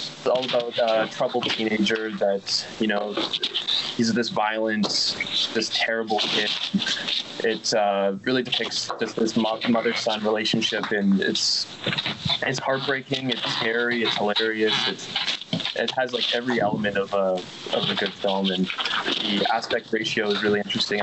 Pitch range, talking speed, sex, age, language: 100-115 Hz, 145 wpm, male, 20-39, English